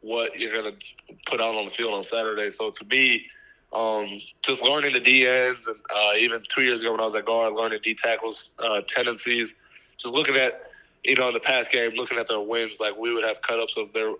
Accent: American